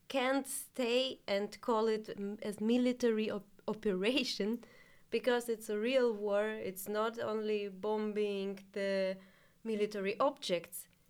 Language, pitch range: German, 185-230 Hz